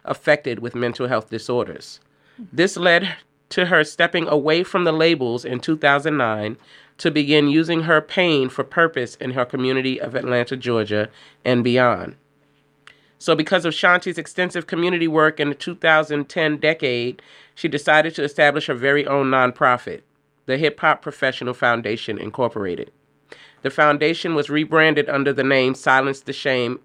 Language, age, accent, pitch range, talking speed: English, 30-49, American, 130-160 Hz, 150 wpm